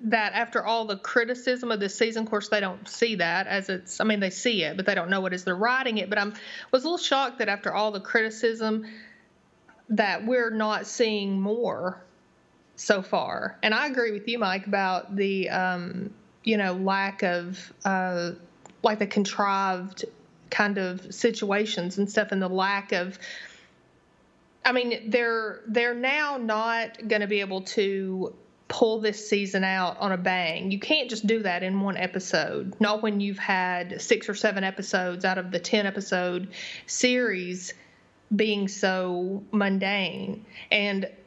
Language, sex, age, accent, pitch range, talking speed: English, female, 30-49, American, 190-225 Hz, 175 wpm